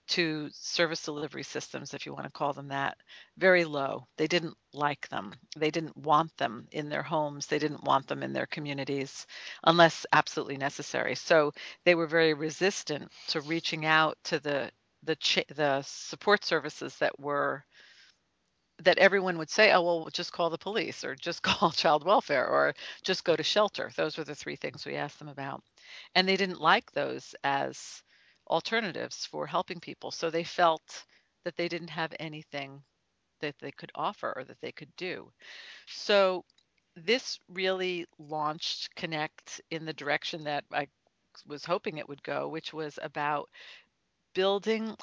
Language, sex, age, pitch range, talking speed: English, female, 50-69, 150-175 Hz, 165 wpm